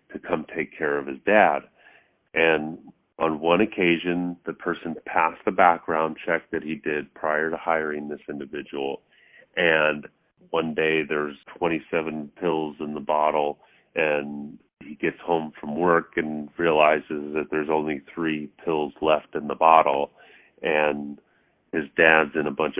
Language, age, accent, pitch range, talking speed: English, 40-59, American, 75-90 Hz, 150 wpm